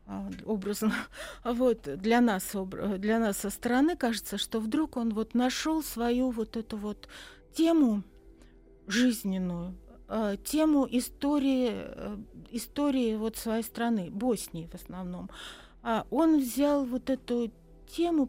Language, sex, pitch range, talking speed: Russian, female, 205-260 Hz, 110 wpm